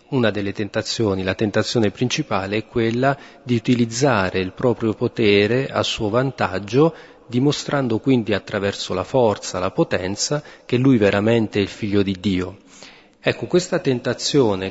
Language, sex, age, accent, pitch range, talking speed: Italian, male, 40-59, native, 105-125 Hz, 140 wpm